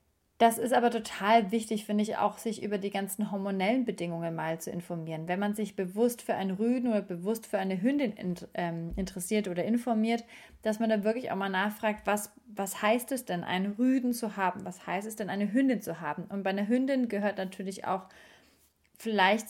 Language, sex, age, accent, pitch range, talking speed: German, female, 30-49, German, 190-225 Hz, 205 wpm